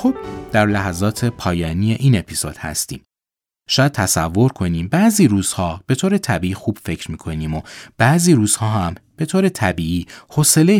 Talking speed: 140 wpm